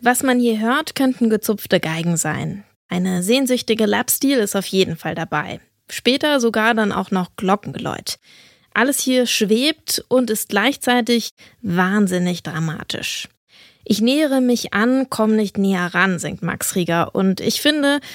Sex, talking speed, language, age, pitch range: female, 150 wpm, German, 20-39, 185-245 Hz